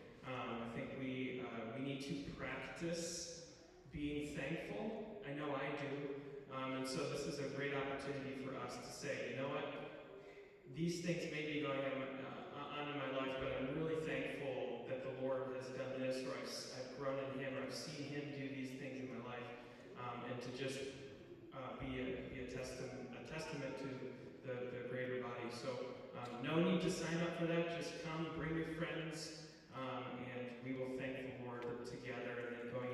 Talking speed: 200 wpm